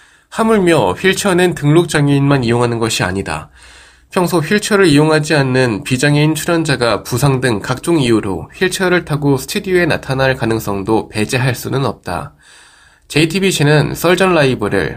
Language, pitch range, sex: Korean, 120-165 Hz, male